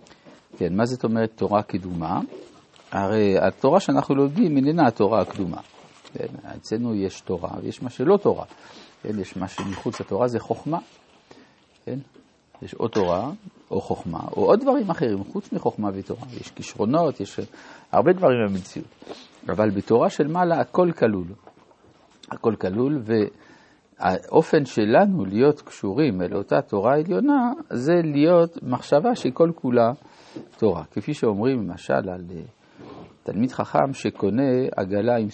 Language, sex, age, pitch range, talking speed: Hebrew, male, 50-69, 100-150 Hz, 130 wpm